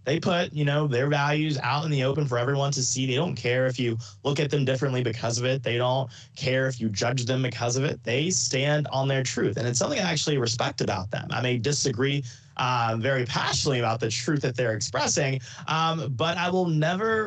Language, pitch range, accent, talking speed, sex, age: English, 125-165 Hz, American, 230 wpm, male, 20-39